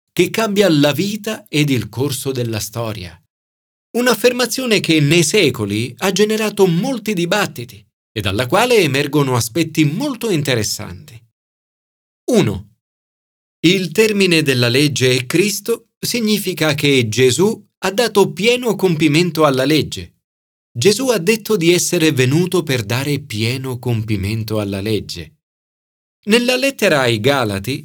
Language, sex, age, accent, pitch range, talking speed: Italian, male, 40-59, native, 115-180 Hz, 120 wpm